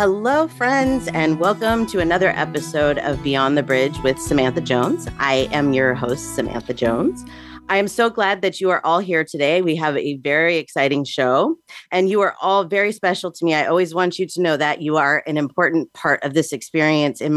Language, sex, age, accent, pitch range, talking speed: English, female, 30-49, American, 150-195 Hz, 205 wpm